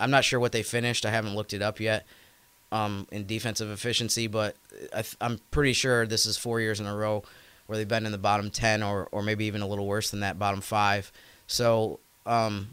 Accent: American